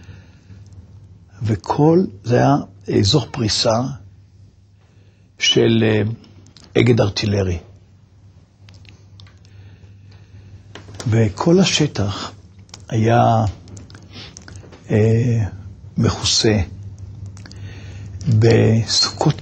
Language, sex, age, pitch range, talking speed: Hebrew, male, 60-79, 95-115 Hz, 40 wpm